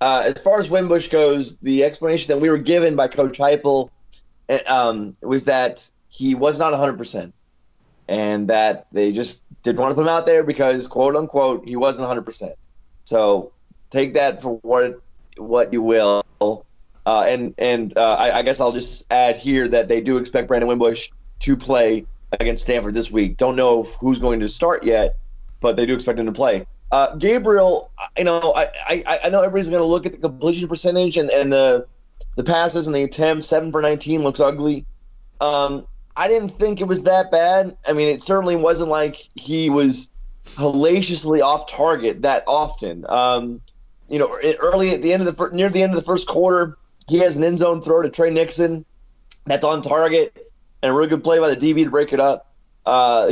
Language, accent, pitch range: English, American, 125-170 Hz